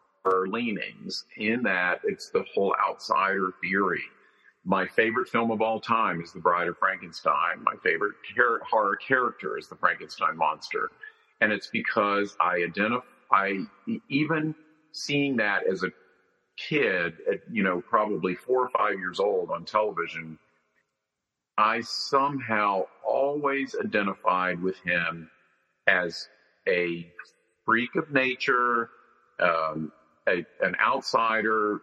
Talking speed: 125 wpm